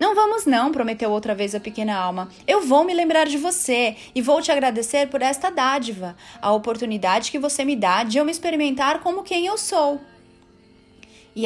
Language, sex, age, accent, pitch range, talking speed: Portuguese, female, 30-49, Brazilian, 220-290 Hz, 195 wpm